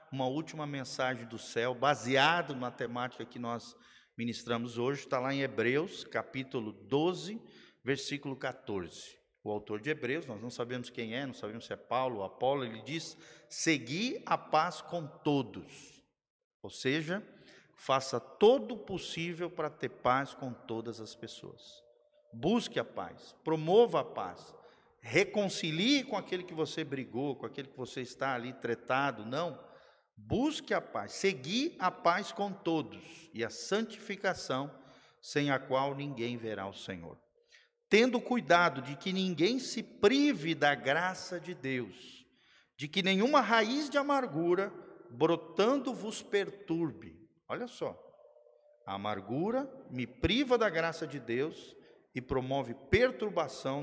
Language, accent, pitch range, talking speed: Portuguese, Brazilian, 125-190 Hz, 140 wpm